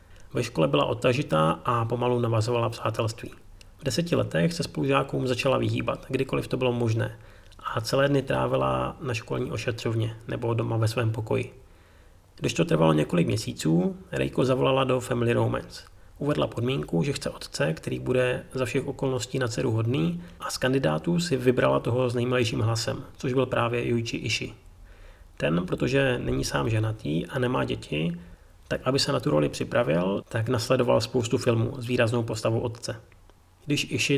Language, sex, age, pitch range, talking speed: Czech, male, 30-49, 110-130 Hz, 165 wpm